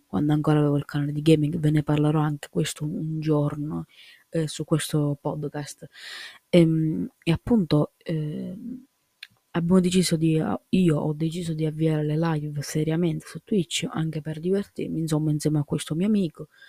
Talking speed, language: 160 wpm, Italian